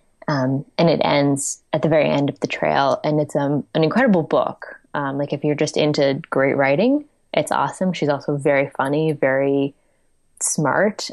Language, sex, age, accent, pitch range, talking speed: English, female, 20-39, American, 150-190 Hz, 180 wpm